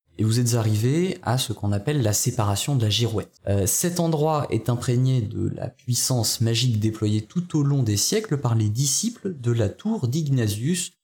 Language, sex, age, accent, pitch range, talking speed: French, male, 20-39, French, 110-145 Hz, 190 wpm